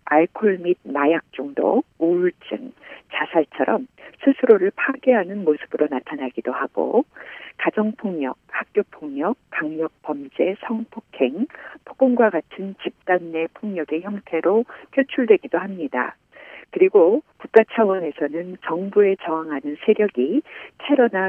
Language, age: Korean, 50-69